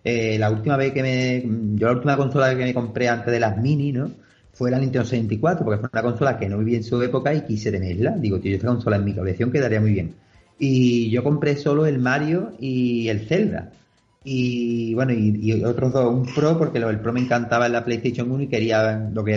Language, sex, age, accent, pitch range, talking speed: Spanish, male, 30-49, Spanish, 110-130 Hz, 230 wpm